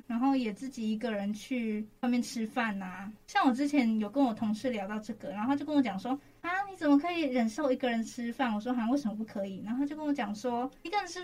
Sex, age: female, 20-39